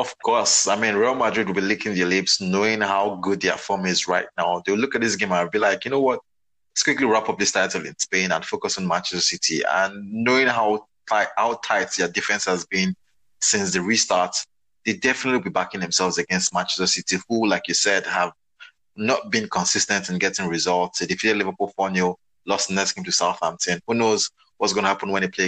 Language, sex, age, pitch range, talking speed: English, male, 20-39, 95-115 Hz, 225 wpm